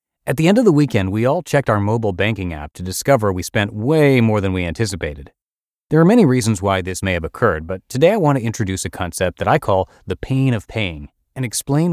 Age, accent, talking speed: 30-49, American, 235 wpm